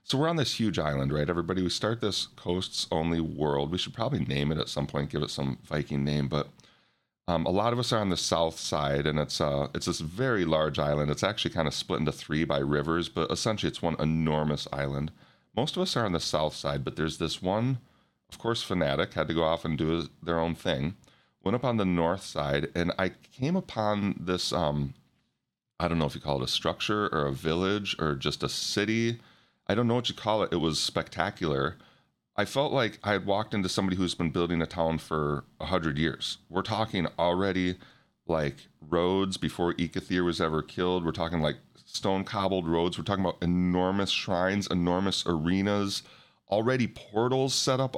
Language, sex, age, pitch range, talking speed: English, male, 30-49, 80-110 Hz, 210 wpm